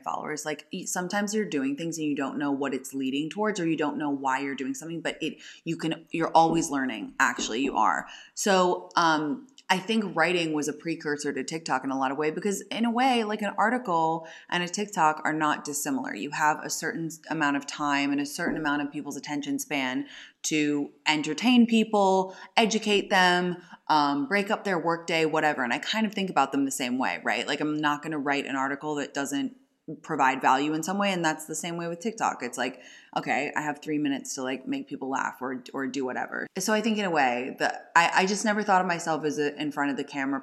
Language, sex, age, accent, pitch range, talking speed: English, female, 20-39, American, 145-185 Hz, 235 wpm